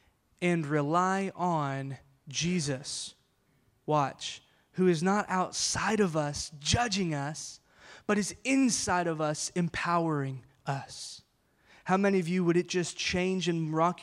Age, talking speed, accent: 20-39, 130 wpm, American